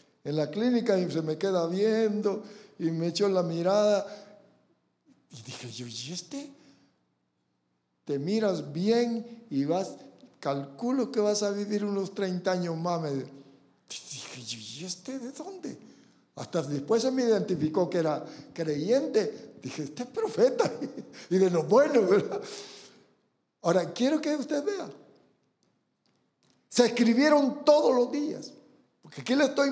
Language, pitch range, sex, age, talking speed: English, 170-235 Hz, male, 60-79, 135 wpm